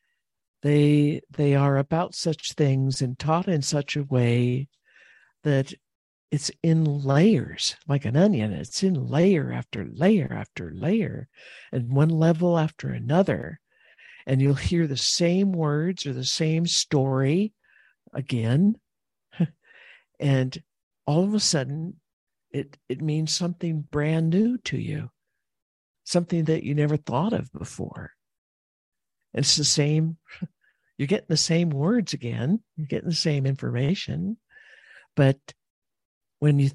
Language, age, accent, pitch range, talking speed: English, 60-79, American, 135-170 Hz, 130 wpm